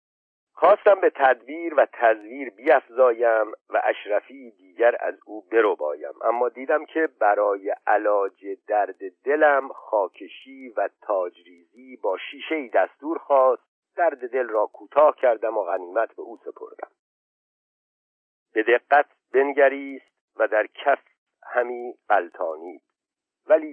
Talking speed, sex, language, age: 115 wpm, male, Persian, 50-69